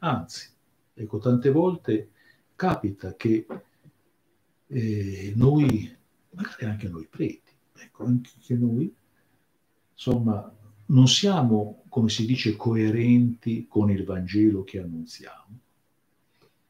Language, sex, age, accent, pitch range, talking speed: Italian, male, 60-79, native, 105-130 Hz, 100 wpm